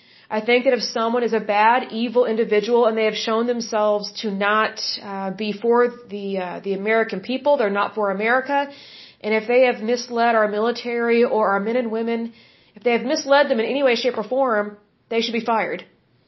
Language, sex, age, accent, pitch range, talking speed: English, female, 30-49, American, 210-245 Hz, 205 wpm